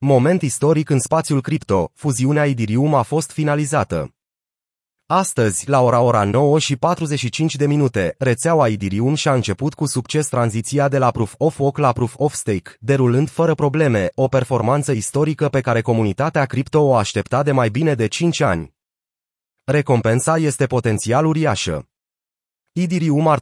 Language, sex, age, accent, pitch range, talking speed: Romanian, male, 30-49, native, 115-150 Hz, 145 wpm